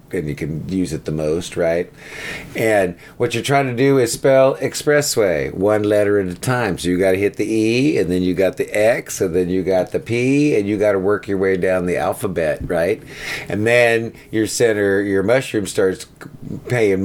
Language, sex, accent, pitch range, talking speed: English, male, American, 90-115 Hz, 210 wpm